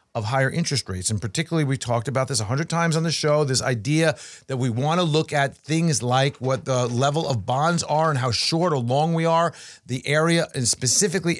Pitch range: 130-165 Hz